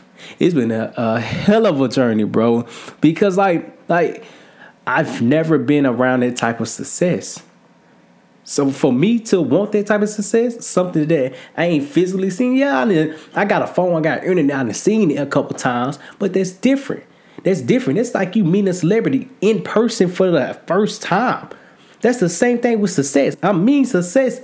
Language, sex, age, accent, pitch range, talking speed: English, male, 20-39, American, 170-245 Hz, 185 wpm